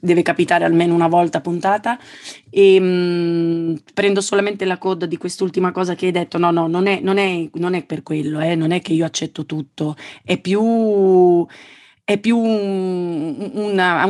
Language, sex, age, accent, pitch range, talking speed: Italian, female, 30-49, native, 165-185 Hz, 170 wpm